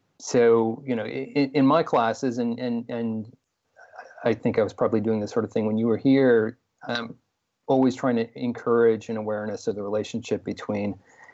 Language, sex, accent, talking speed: English, male, American, 190 wpm